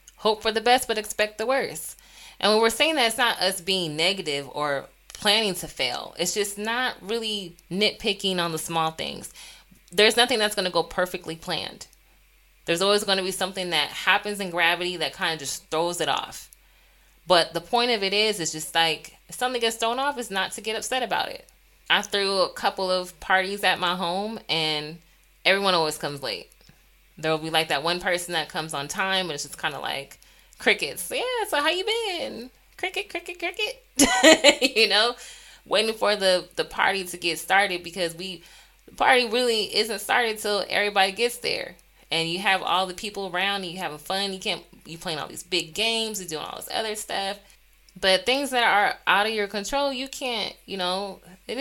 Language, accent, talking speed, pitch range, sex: English, American, 205 wpm, 170-235 Hz, female